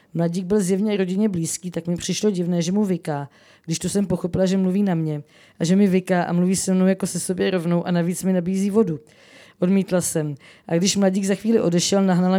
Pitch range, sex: 165-195 Hz, female